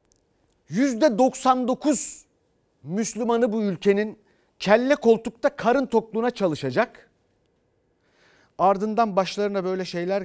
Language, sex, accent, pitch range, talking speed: Turkish, male, native, 165-240 Hz, 75 wpm